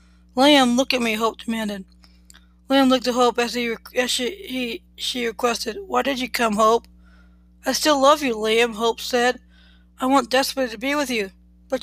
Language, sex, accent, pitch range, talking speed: English, female, American, 205-255 Hz, 180 wpm